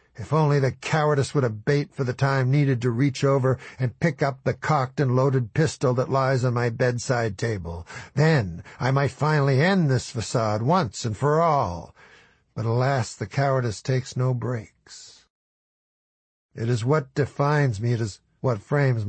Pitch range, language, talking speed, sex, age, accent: 105-140 Hz, English, 170 wpm, male, 60-79, American